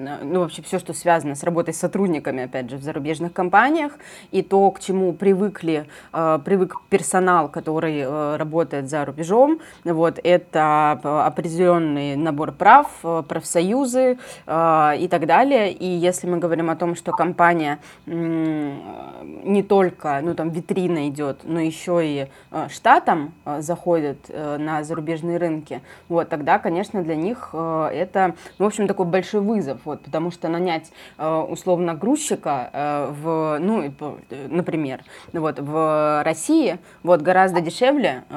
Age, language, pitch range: 20-39, Russian, 155-180 Hz